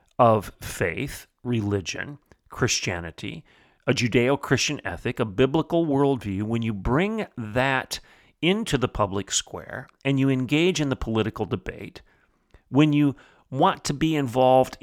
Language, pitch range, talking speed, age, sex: English, 110-145 Hz, 125 wpm, 40-59, male